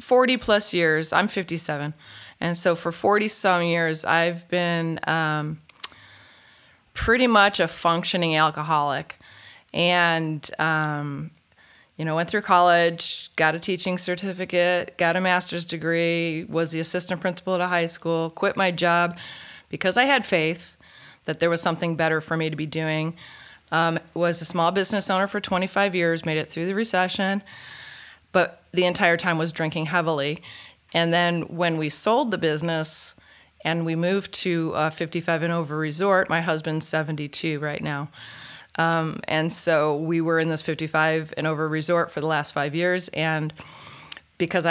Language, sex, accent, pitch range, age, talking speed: English, female, American, 160-180 Hz, 20-39, 160 wpm